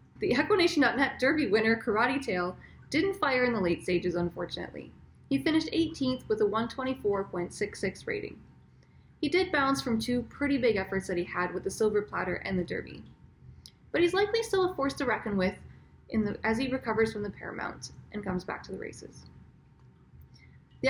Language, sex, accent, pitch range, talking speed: English, female, American, 190-275 Hz, 180 wpm